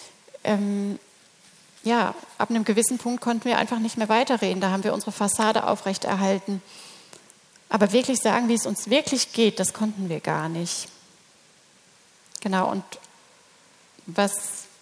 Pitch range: 195-230 Hz